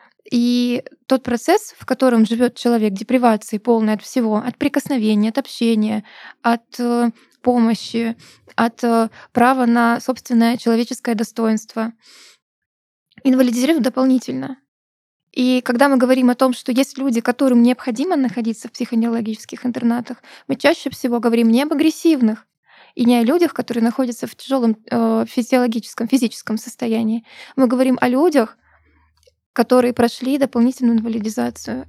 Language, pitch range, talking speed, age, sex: Russian, 230-260 Hz, 125 wpm, 20-39, female